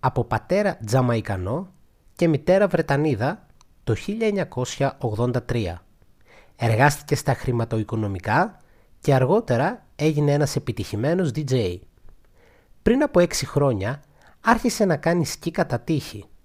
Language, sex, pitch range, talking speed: Greek, male, 115-155 Hz, 100 wpm